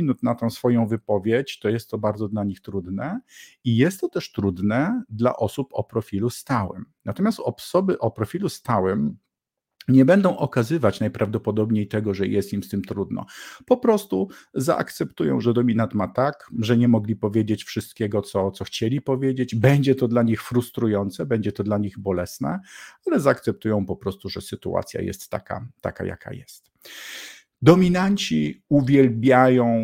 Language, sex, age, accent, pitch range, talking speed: Polish, male, 50-69, native, 105-125 Hz, 155 wpm